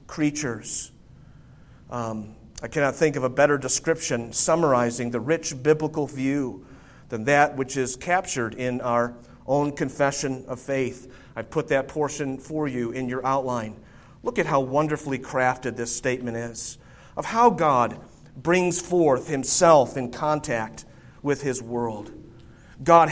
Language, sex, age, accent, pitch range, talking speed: English, male, 40-59, American, 130-175 Hz, 140 wpm